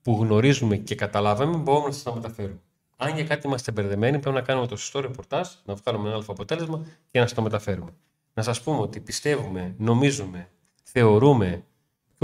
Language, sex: Greek, male